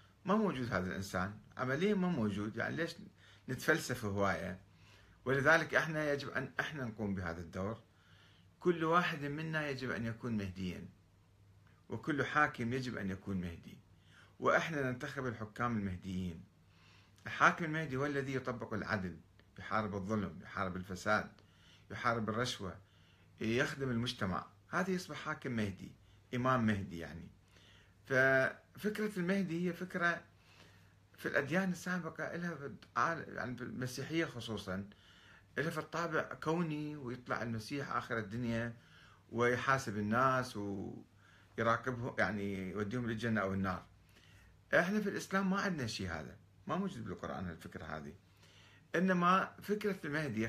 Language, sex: Arabic, male